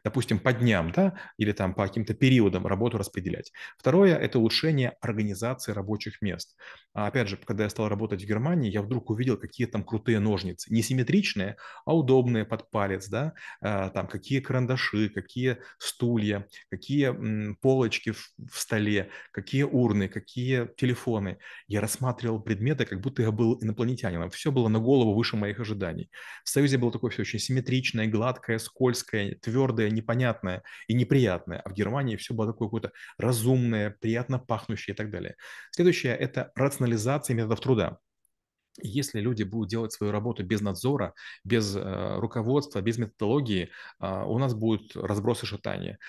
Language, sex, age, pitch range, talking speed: Russian, male, 30-49, 105-125 Hz, 150 wpm